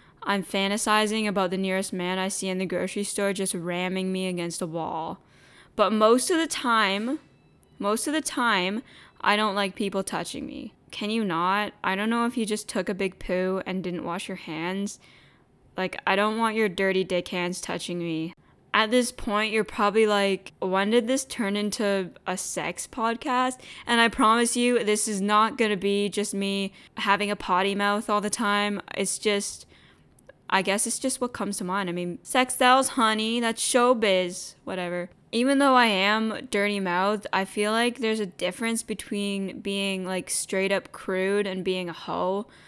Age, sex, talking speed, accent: 10-29, female, 185 wpm, American